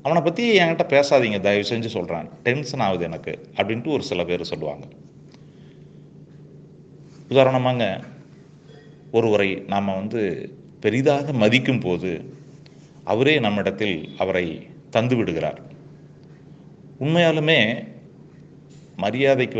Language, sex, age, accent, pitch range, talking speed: Tamil, male, 30-49, native, 100-145 Hz, 85 wpm